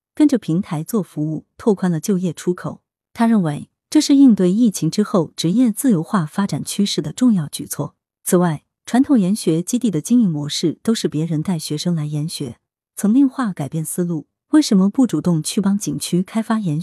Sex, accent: female, native